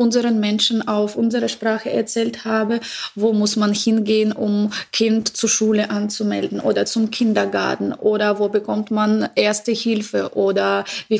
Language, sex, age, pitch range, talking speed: German, female, 20-39, 210-230 Hz, 145 wpm